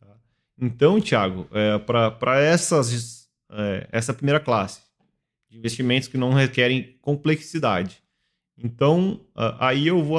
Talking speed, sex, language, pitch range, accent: 110 wpm, male, Portuguese, 110-135 Hz, Brazilian